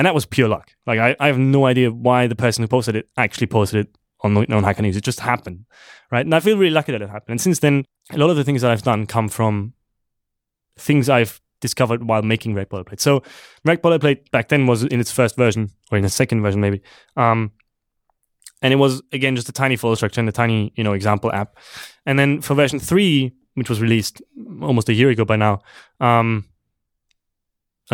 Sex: male